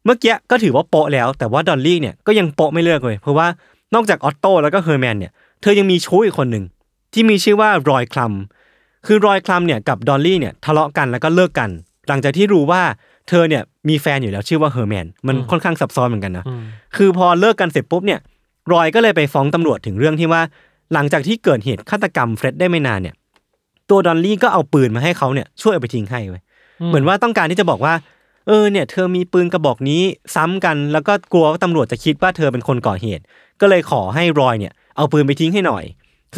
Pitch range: 130-180 Hz